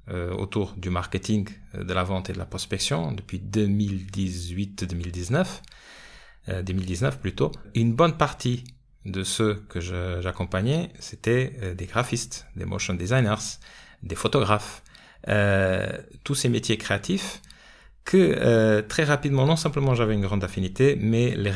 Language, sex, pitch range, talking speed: French, male, 95-120 Hz, 130 wpm